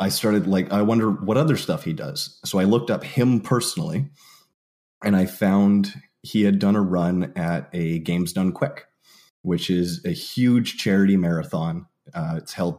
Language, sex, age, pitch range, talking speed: English, male, 30-49, 90-120 Hz, 180 wpm